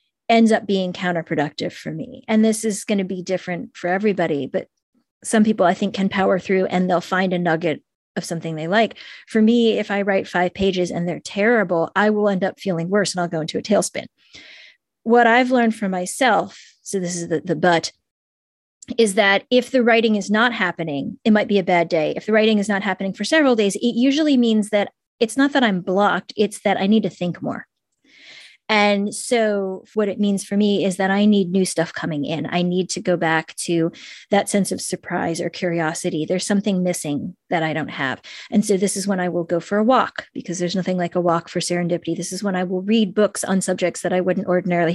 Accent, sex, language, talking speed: American, female, English, 225 wpm